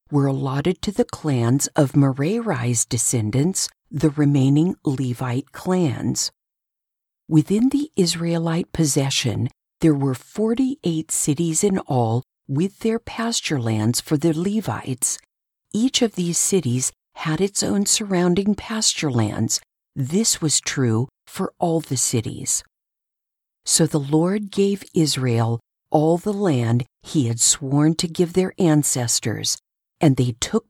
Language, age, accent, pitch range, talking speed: English, 50-69, American, 125-180 Hz, 125 wpm